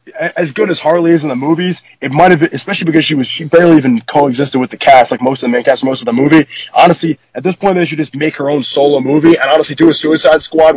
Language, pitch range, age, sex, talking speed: English, 140-165 Hz, 20-39, male, 285 wpm